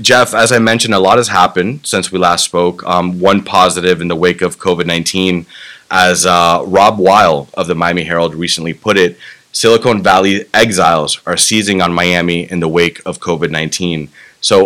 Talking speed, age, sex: 180 wpm, 30-49, male